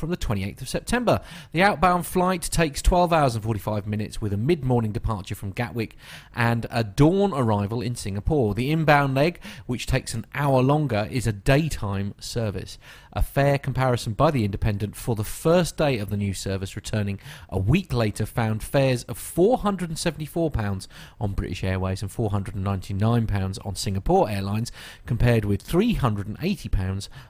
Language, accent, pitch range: English, British, 100-140 Hz